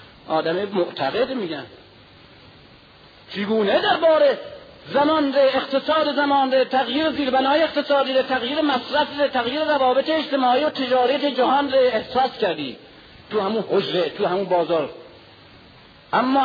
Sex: male